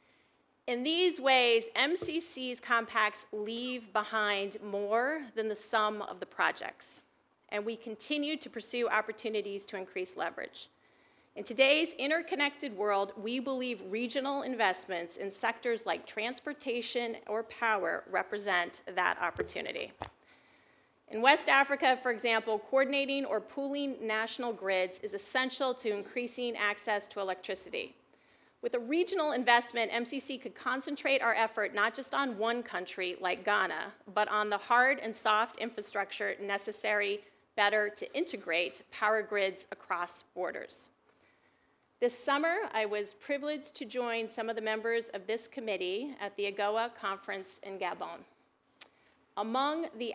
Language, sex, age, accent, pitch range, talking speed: English, female, 30-49, American, 205-265 Hz, 130 wpm